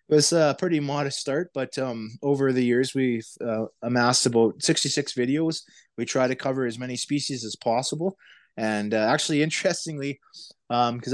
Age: 20-39